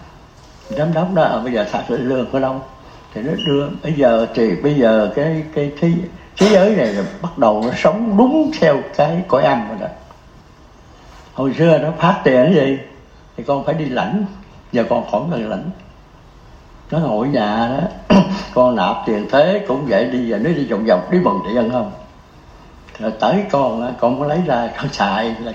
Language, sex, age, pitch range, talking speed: Vietnamese, male, 60-79, 120-190 Hz, 195 wpm